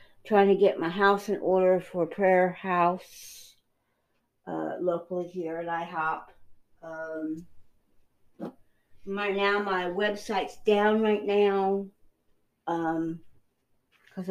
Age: 60-79